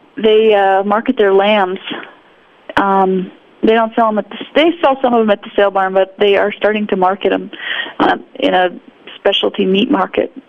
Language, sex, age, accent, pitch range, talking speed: English, female, 30-49, American, 195-240 Hz, 195 wpm